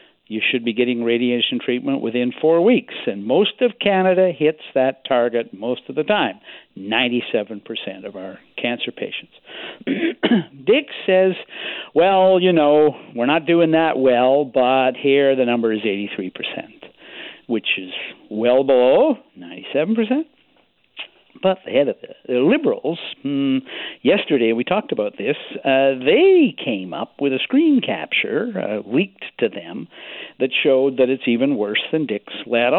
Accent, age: American, 60-79